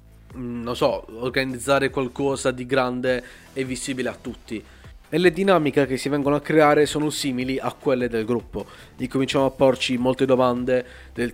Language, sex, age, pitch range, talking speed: Italian, male, 20-39, 125-145 Hz, 165 wpm